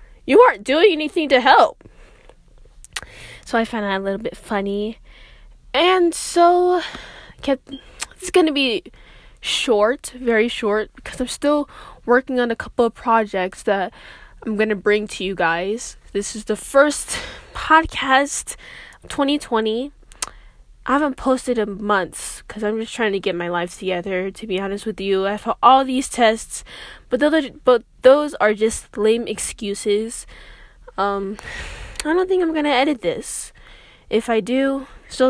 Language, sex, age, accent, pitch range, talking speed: English, female, 10-29, American, 210-275 Hz, 155 wpm